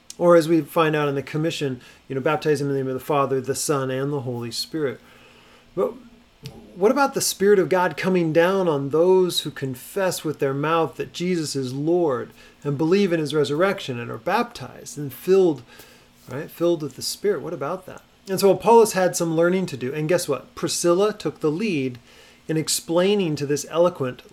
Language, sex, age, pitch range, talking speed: English, male, 40-59, 130-175 Hz, 200 wpm